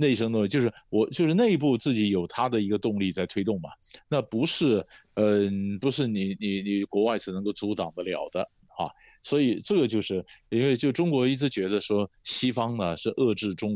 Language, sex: Chinese, male